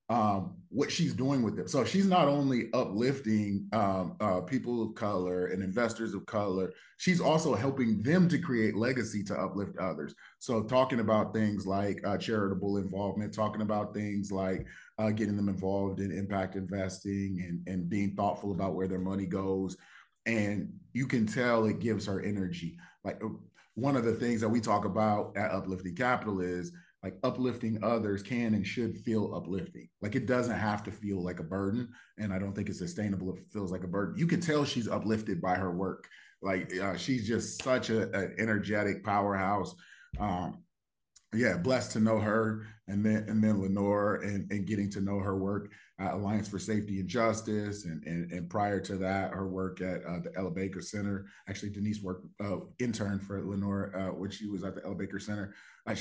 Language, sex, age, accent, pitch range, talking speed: English, male, 30-49, American, 95-115 Hz, 190 wpm